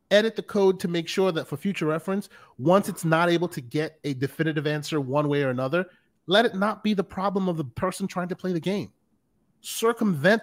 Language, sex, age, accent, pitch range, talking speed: English, male, 30-49, American, 150-205 Hz, 220 wpm